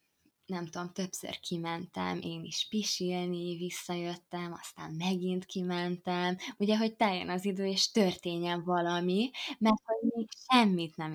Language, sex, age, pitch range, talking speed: Hungarian, female, 20-39, 170-205 Hz, 130 wpm